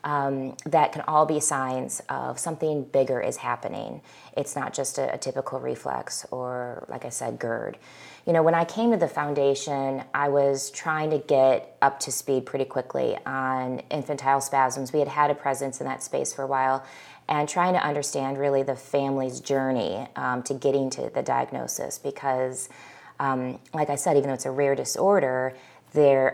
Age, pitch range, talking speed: 20-39, 130-155 Hz, 185 wpm